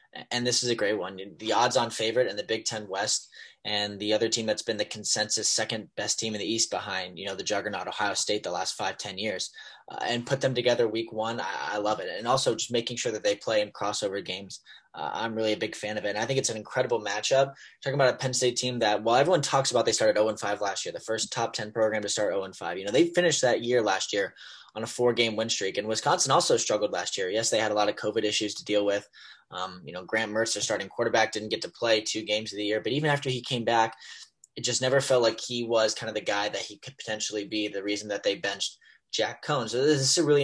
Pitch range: 105-130 Hz